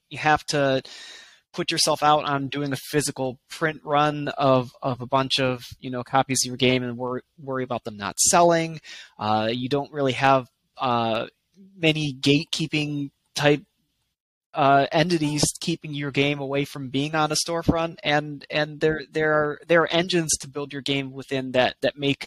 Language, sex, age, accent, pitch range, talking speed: English, male, 20-39, American, 125-155 Hz, 180 wpm